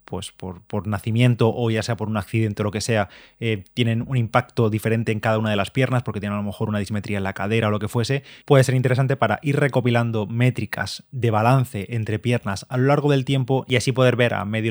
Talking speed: 250 wpm